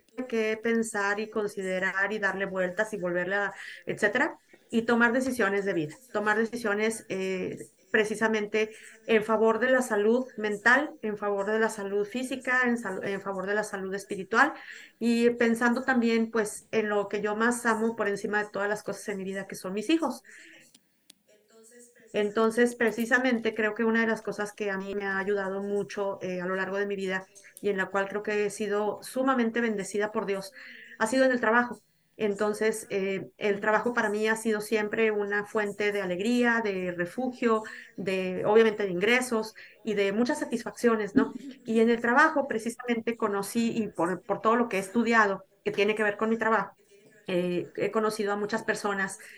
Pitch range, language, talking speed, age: 200-225 Hz, Spanish, 185 wpm, 30-49